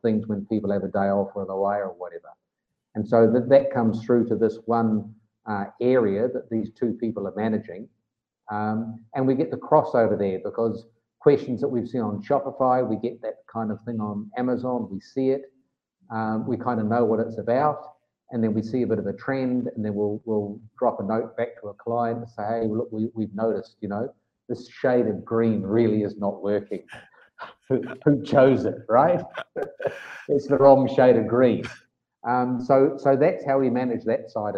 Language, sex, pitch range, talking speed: English, male, 110-125 Hz, 205 wpm